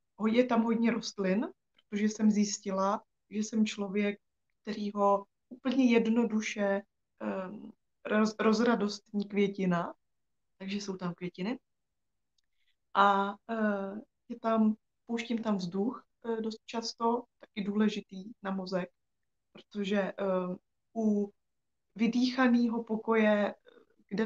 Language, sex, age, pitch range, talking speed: Czech, female, 20-39, 195-215 Hz, 85 wpm